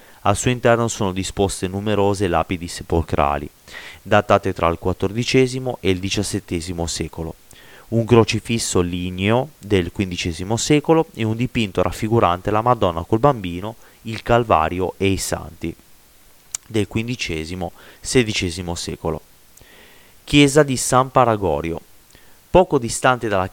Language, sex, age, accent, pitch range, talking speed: Italian, male, 30-49, native, 90-115 Hz, 115 wpm